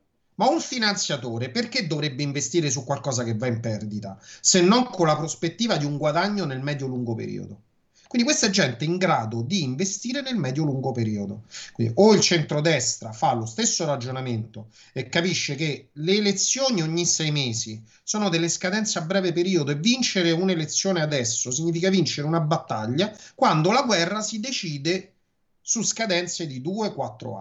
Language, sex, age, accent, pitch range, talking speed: Italian, male, 30-49, native, 120-190 Hz, 160 wpm